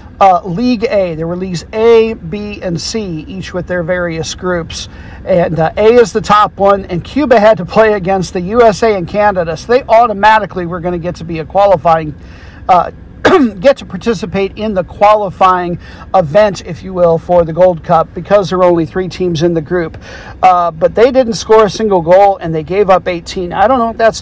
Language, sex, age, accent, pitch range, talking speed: English, male, 50-69, American, 170-210 Hz, 210 wpm